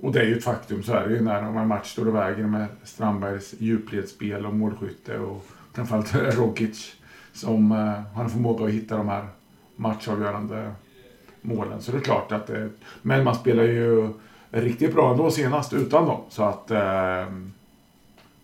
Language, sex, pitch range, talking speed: English, male, 105-120 Hz, 175 wpm